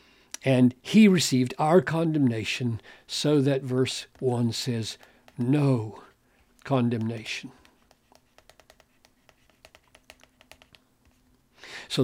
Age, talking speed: 60-79, 65 wpm